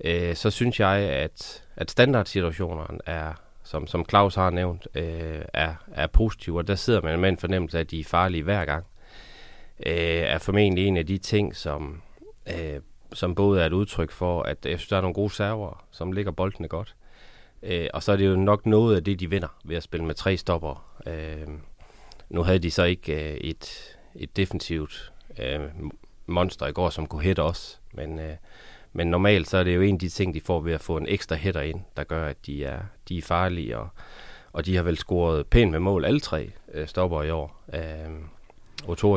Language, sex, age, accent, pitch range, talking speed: Danish, male, 30-49, native, 80-95 Hz, 210 wpm